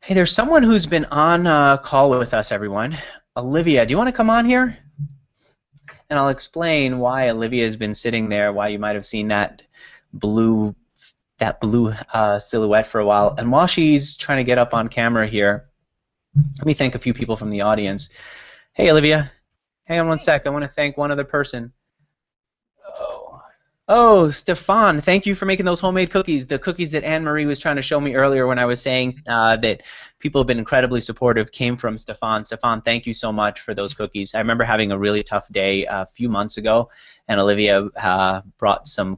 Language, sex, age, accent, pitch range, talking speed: English, male, 30-49, American, 105-145 Hz, 200 wpm